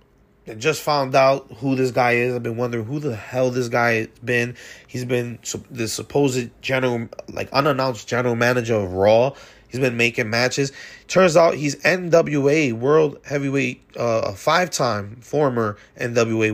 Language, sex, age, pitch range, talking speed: English, male, 20-39, 110-130 Hz, 150 wpm